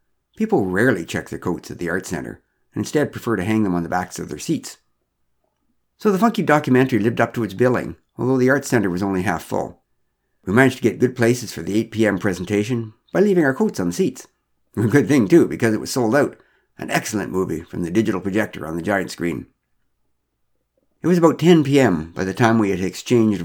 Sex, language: male, English